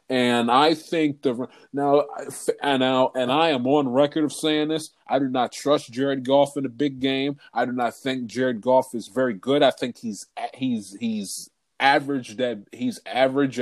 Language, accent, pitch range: English, American, 120-145 Hz